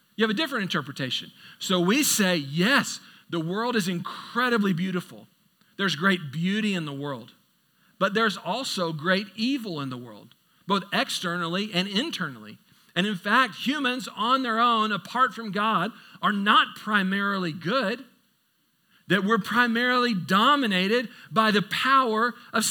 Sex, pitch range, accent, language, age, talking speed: male, 185-245 Hz, American, English, 50-69, 145 wpm